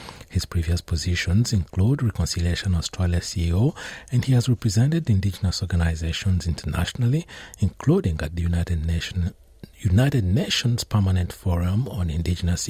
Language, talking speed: English, 120 wpm